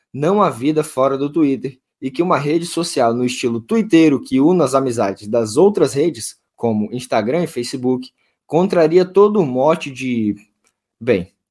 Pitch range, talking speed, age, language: 125-170 Hz, 160 wpm, 20-39, Portuguese